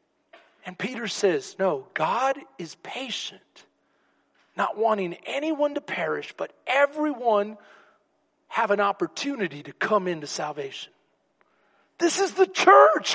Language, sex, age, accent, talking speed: English, male, 40-59, American, 115 wpm